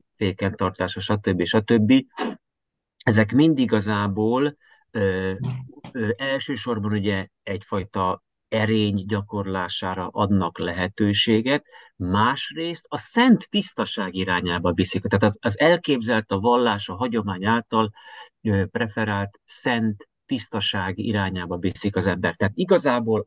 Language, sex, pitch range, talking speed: Hungarian, male, 95-115 Hz, 105 wpm